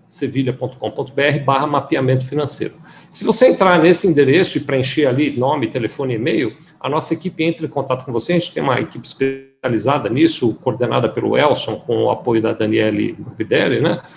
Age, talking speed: 50-69, 175 wpm